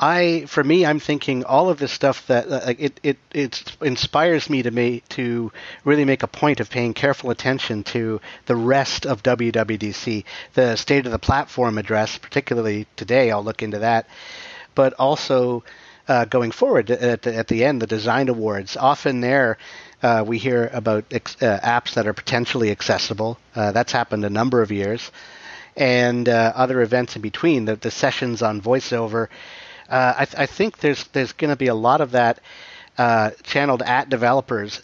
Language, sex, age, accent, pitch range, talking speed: English, male, 50-69, American, 115-135 Hz, 190 wpm